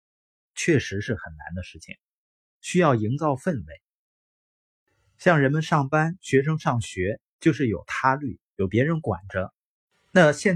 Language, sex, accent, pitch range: Chinese, male, native, 105-150 Hz